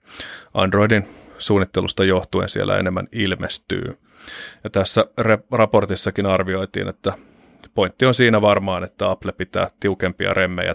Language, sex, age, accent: Finnish, male, 30-49, native